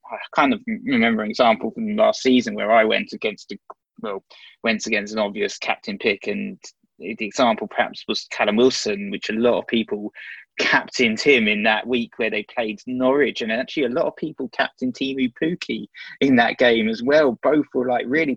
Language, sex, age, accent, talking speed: English, male, 20-39, British, 195 wpm